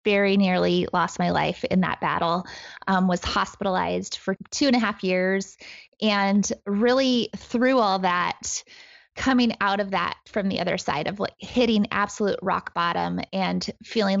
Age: 20-39